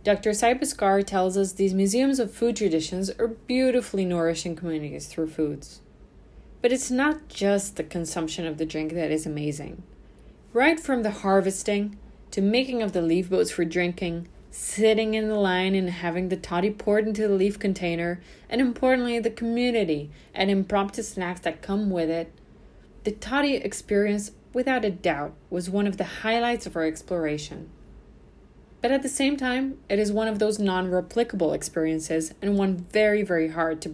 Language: English